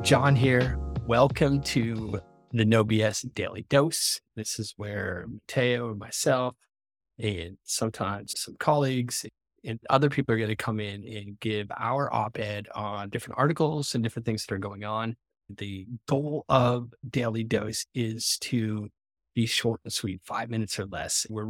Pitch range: 110-135 Hz